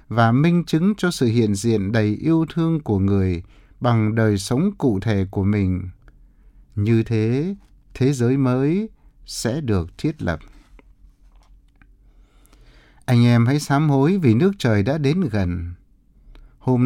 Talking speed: 140 wpm